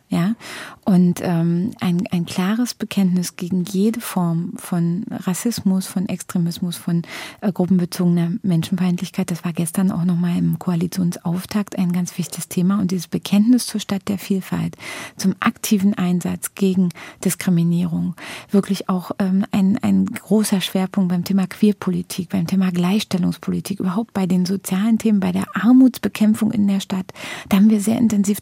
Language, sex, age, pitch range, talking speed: German, female, 30-49, 185-210 Hz, 150 wpm